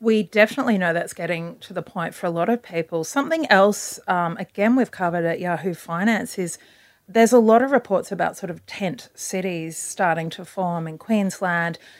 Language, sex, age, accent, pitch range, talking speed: English, female, 30-49, Australian, 175-225 Hz, 190 wpm